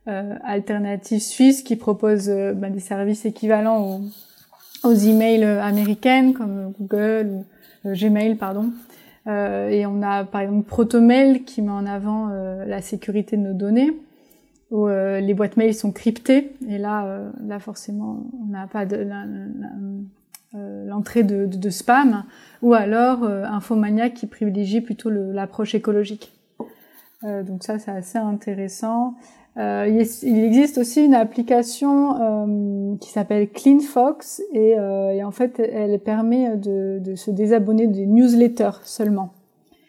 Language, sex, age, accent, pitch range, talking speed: French, female, 20-39, French, 200-235 Hz, 155 wpm